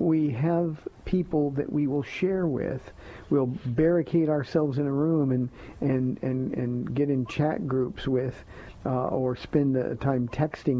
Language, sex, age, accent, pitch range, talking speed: English, male, 50-69, American, 130-170 Hz, 155 wpm